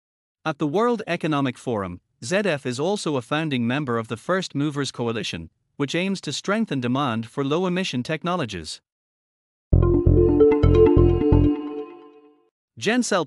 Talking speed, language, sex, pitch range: 115 wpm, English, male, 120-170 Hz